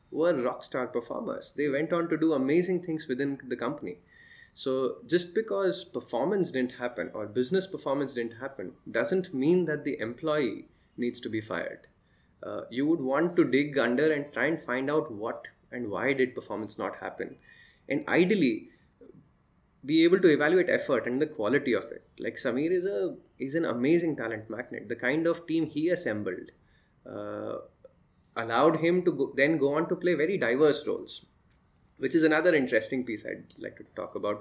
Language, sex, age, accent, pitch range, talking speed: English, male, 20-39, Indian, 115-160 Hz, 175 wpm